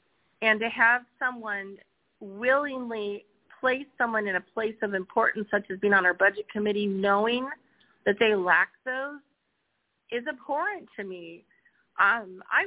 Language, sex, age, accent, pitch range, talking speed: English, female, 40-59, American, 205-260 Hz, 140 wpm